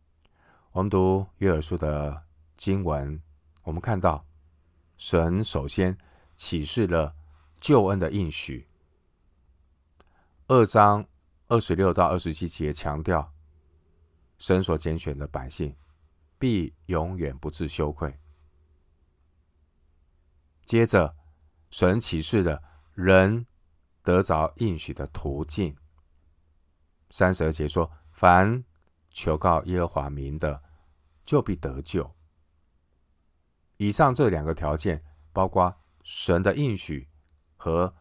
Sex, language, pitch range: male, Chinese, 75-90 Hz